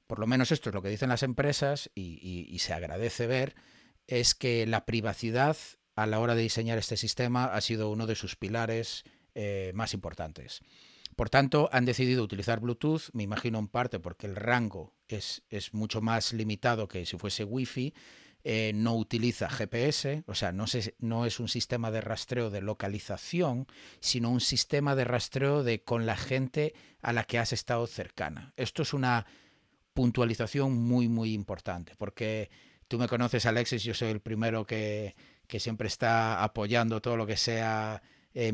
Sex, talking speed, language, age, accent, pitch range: male, 175 wpm, Spanish, 40-59, Spanish, 110-125 Hz